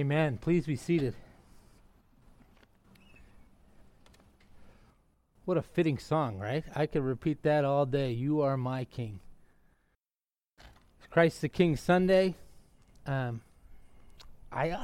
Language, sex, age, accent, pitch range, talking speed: English, male, 30-49, American, 120-155 Hz, 100 wpm